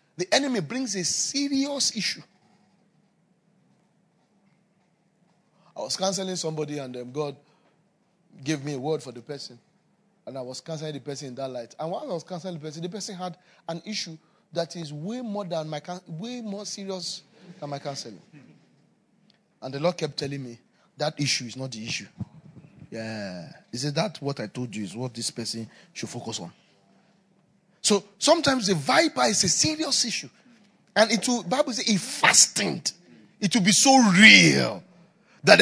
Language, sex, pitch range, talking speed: English, male, 150-205 Hz, 175 wpm